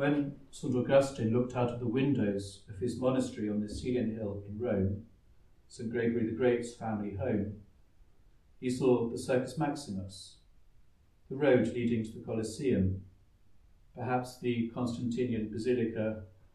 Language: English